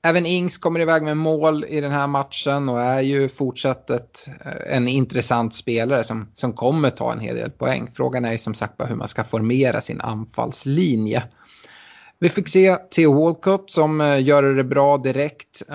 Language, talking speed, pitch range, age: Swedish, 185 wpm, 120-150 Hz, 20-39